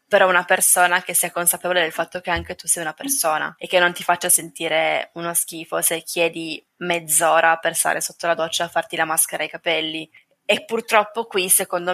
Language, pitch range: Italian, 165-190 Hz